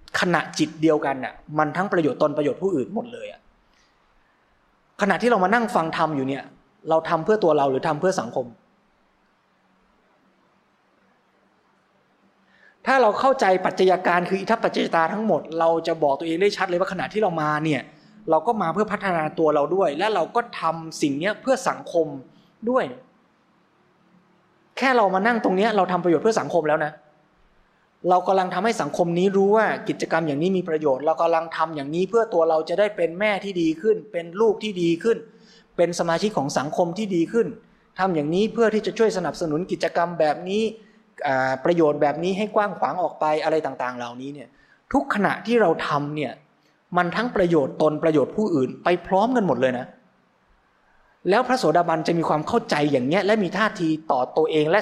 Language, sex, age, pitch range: Thai, male, 20-39, 155-210 Hz